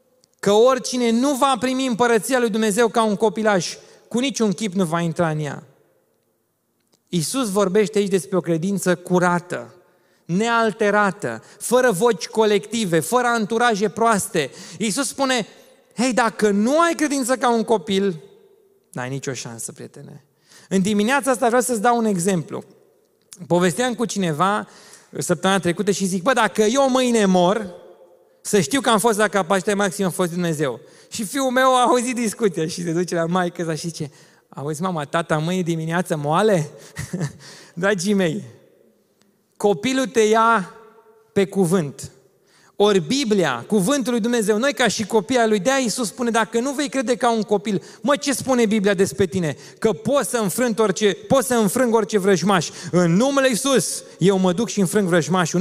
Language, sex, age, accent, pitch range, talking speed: Romanian, male, 30-49, native, 185-245 Hz, 160 wpm